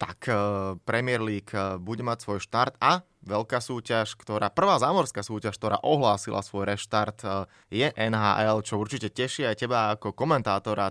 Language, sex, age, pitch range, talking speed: Slovak, male, 20-39, 100-125 Hz, 150 wpm